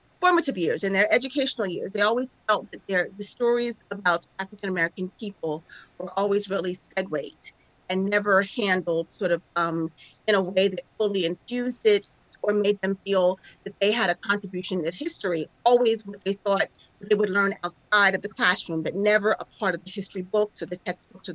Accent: American